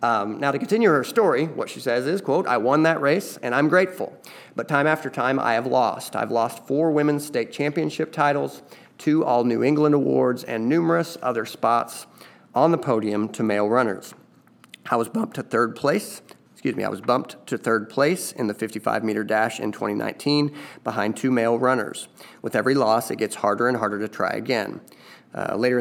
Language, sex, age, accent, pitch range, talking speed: English, male, 40-59, American, 110-140 Hz, 200 wpm